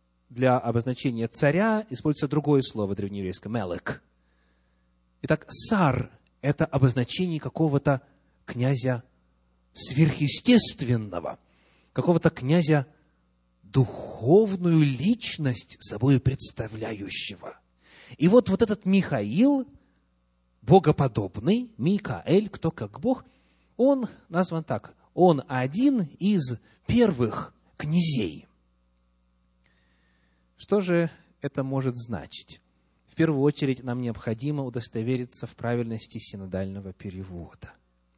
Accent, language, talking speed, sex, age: native, Russian, 85 wpm, male, 30-49